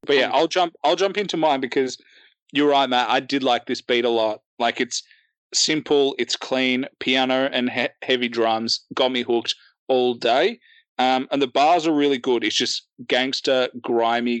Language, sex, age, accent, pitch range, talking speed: English, male, 30-49, Australian, 120-145 Hz, 190 wpm